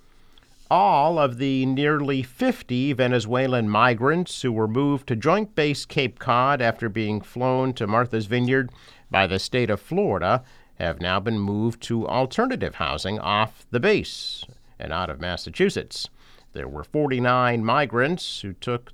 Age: 50-69